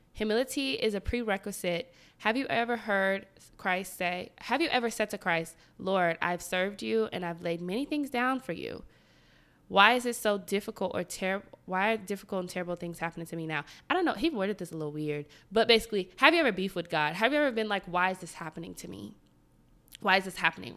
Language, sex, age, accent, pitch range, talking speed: English, female, 20-39, American, 175-220 Hz, 225 wpm